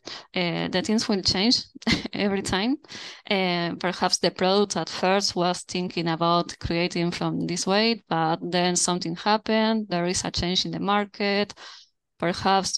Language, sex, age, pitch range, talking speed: English, female, 20-39, 175-210 Hz, 150 wpm